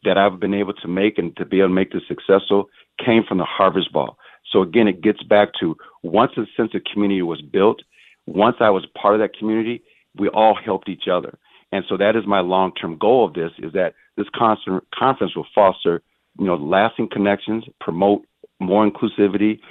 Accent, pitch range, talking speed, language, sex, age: American, 95-110 Hz, 205 wpm, English, male, 50-69